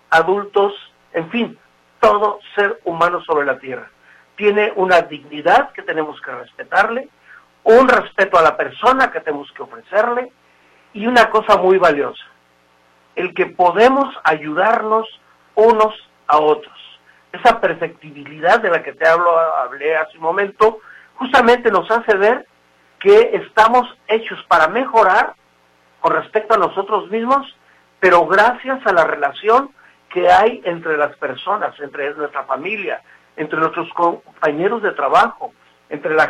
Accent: Mexican